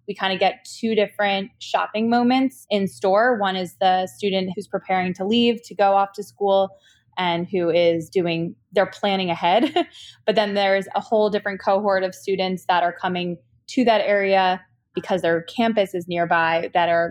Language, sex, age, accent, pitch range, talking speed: English, female, 20-39, American, 170-205 Hz, 180 wpm